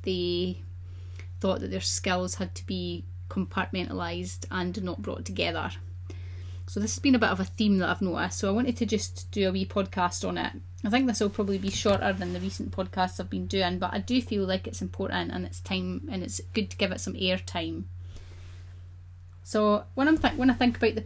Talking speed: 215 wpm